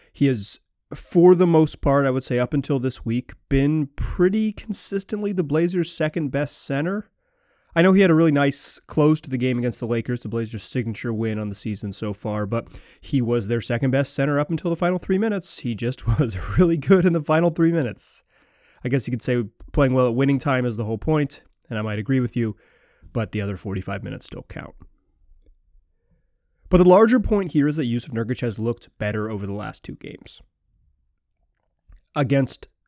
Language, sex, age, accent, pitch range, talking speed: English, male, 30-49, American, 115-160 Hz, 200 wpm